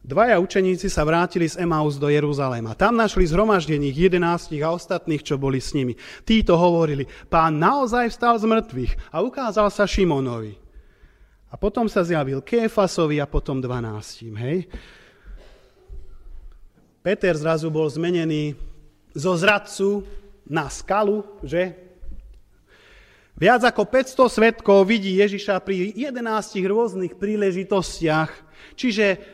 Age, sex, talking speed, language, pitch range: 30-49, male, 120 wpm, Slovak, 145-210 Hz